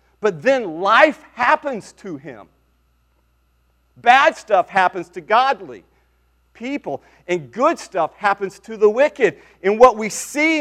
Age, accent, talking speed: 40-59, American, 130 wpm